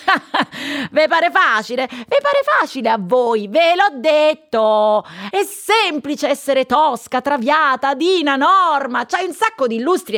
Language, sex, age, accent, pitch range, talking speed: Italian, female, 30-49, native, 215-310 Hz, 135 wpm